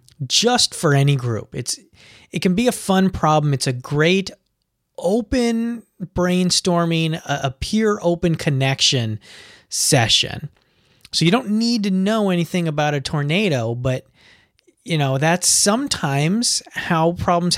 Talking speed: 135 wpm